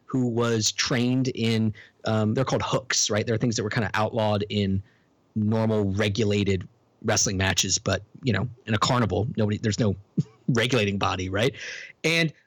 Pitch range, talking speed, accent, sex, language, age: 110-145 Hz, 165 wpm, American, male, English, 30-49